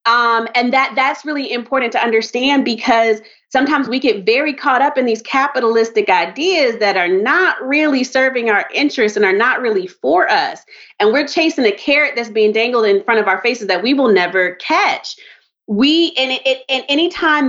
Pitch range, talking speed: 220-285 Hz, 200 wpm